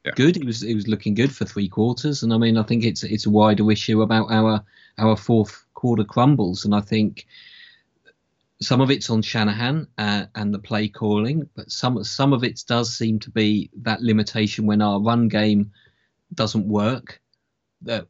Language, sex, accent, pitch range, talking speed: English, male, British, 105-115 Hz, 190 wpm